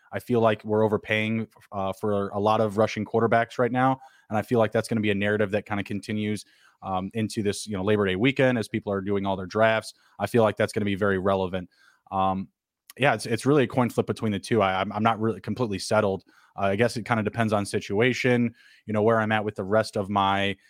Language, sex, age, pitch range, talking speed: English, male, 20-39, 100-115 Hz, 255 wpm